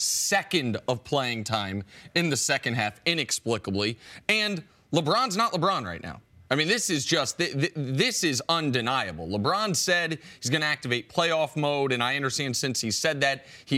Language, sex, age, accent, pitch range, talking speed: English, male, 30-49, American, 130-170 Hz, 180 wpm